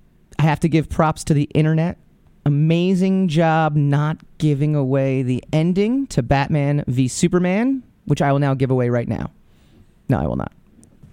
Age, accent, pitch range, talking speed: 30-49, American, 135-175 Hz, 175 wpm